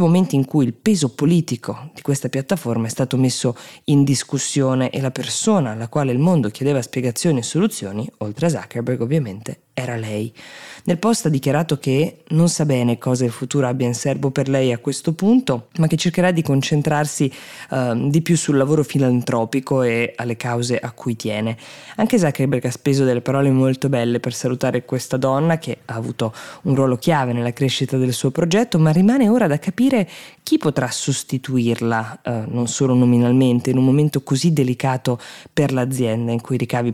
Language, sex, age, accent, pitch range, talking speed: Italian, female, 20-39, native, 120-155 Hz, 185 wpm